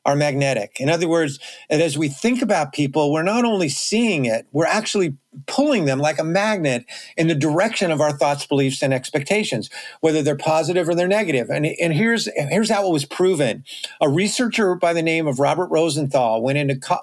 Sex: male